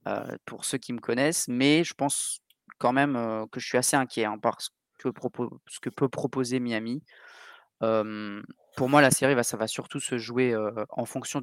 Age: 20-39